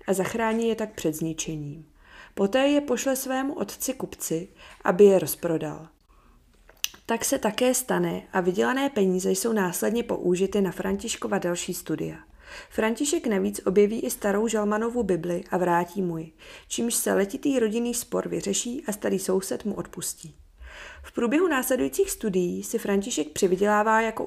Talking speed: 145 wpm